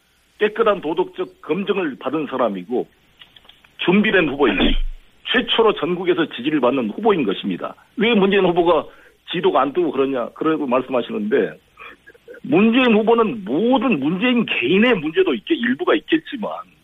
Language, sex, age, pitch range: Korean, male, 50-69, 175-250 Hz